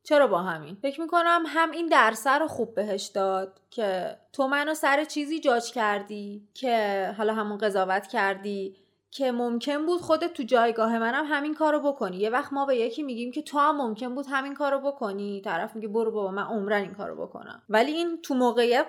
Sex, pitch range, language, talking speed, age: female, 210-290 Hz, Persian, 190 wpm, 20-39